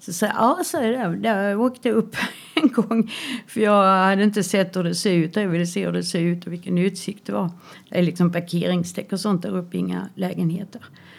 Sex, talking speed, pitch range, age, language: female, 220 wpm, 175-205 Hz, 60-79, Swedish